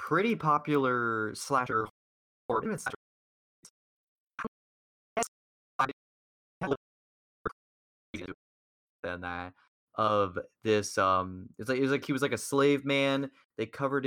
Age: 20-39